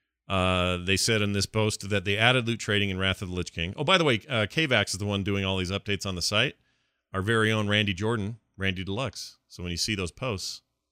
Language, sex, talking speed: English, male, 255 wpm